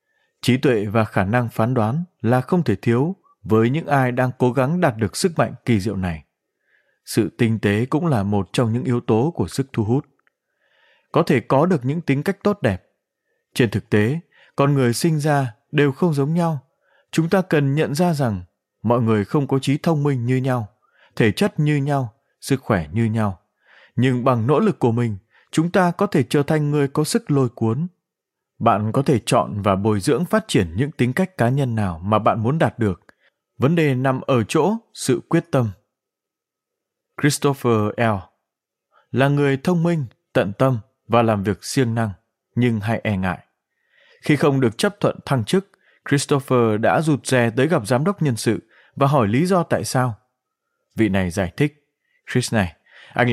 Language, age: Vietnamese, 20-39